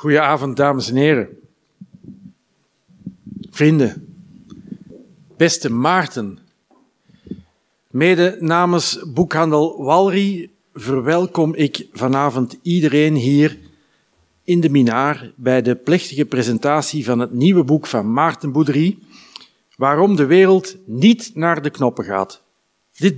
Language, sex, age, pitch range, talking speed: Dutch, male, 50-69, 140-185 Hz, 100 wpm